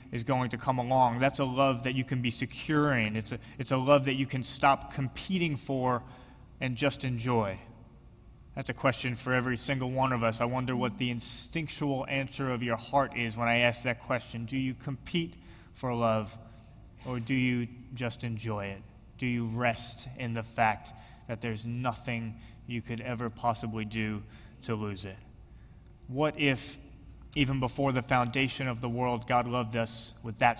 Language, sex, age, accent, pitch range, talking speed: English, male, 20-39, American, 115-135 Hz, 180 wpm